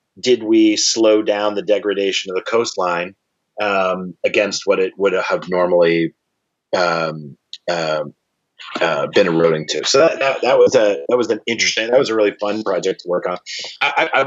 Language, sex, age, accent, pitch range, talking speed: English, male, 30-49, American, 105-130 Hz, 180 wpm